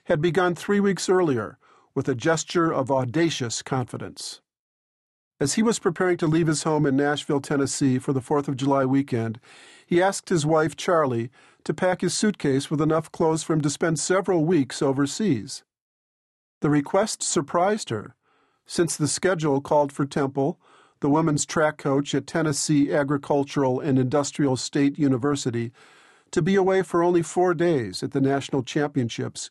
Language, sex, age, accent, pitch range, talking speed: English, male, 50-69, American, 135-170 Hz, 160 wpm